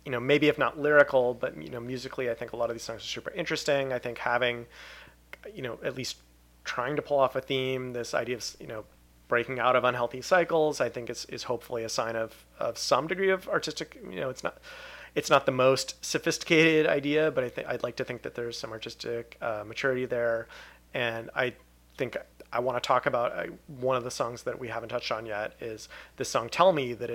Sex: male